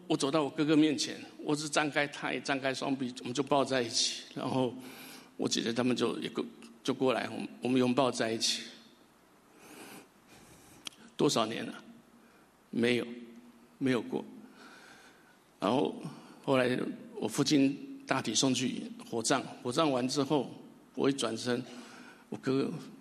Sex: male